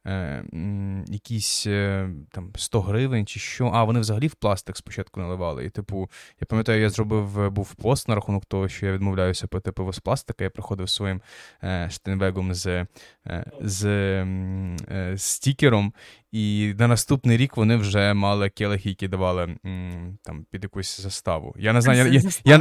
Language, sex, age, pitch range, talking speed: Ukrainian, male, 20-39, 100-120 Hz, 160 wpm